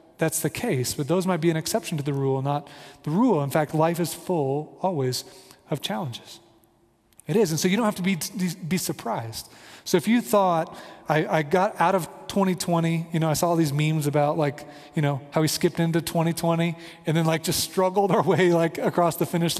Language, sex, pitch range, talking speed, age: English, male, 145-185 Hz, 215 wpm, 30-49